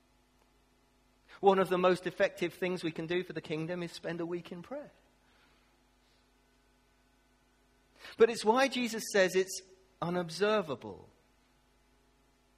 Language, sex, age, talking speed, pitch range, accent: English, male, 40-59, 120 wpm, 140-210 Hz, British